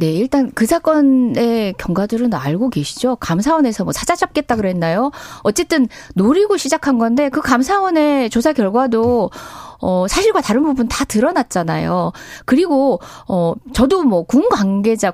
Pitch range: 210-300 Hz